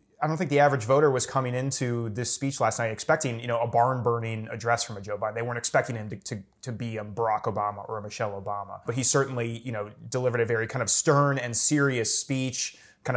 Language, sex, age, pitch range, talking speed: English, male, 30-49, 115-135 Hz, 240 wpm